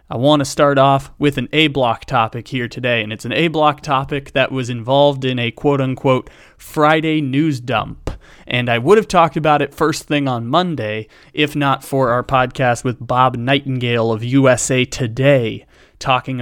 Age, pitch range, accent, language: 20-39, 120-150 Hz, American, English